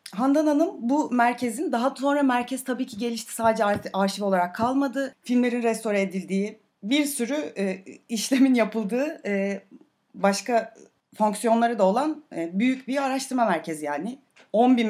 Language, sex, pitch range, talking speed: Turkish, female, 195-275 Hz, 145 wpm